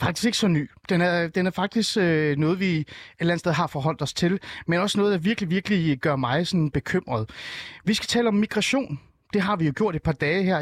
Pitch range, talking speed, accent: 140-195 Hz, 250 wpm, native